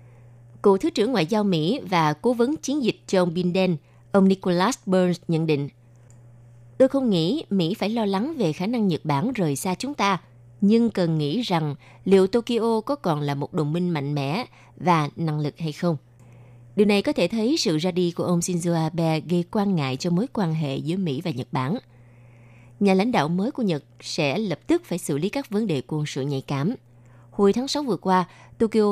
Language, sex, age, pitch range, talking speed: Vietnamese, female, 20-39, 140-205 Hz, 210 wpm